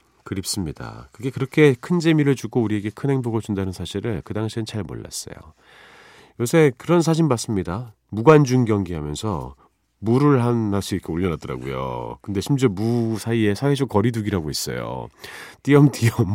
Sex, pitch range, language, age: male, 100-145 Hz, Korean, 40-59